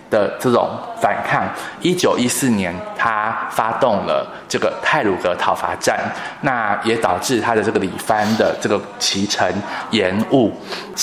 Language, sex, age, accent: Chinese, male, 20-39, native